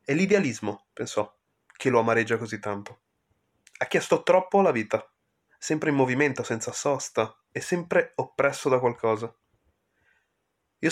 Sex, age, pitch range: male, 20-39, 110-135 Hz